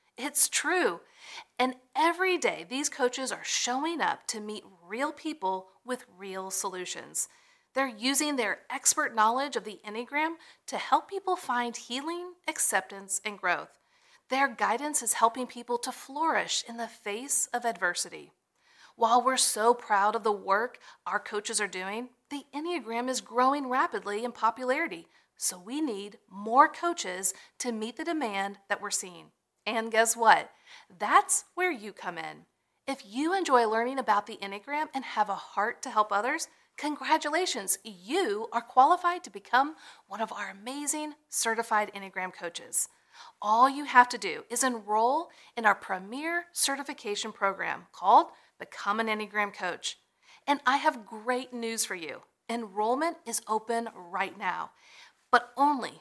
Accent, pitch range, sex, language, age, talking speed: American, 210-290 Hz, female, English, 40-59, 150 wpm